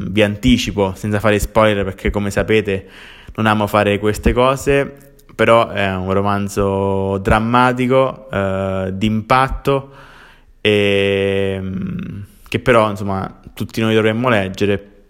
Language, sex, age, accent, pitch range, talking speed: Italian, male, 20-39, native, 95-110 Hz, 110 wpm